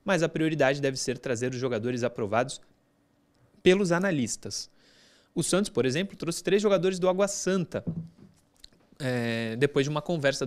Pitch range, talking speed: 145-190 Hz, 145 wpm